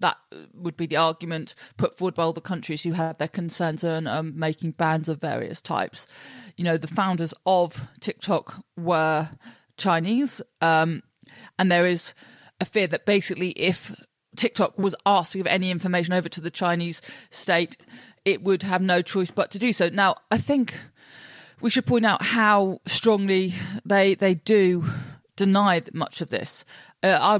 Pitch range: 170-195 Hz